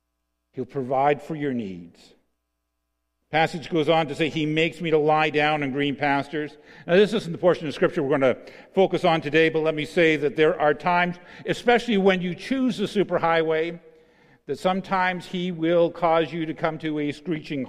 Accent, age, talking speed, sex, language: American, 50-69, 195 wpm, male, English